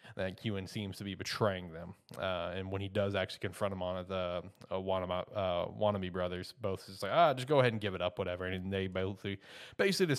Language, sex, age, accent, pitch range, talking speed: English, male, 20-39, American, 100-120 Hz, 225 wpm